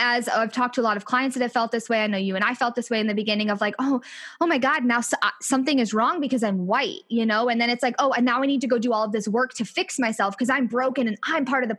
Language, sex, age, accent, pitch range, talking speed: English, female, 20-39, American, 210-270 Hz, 345 wpm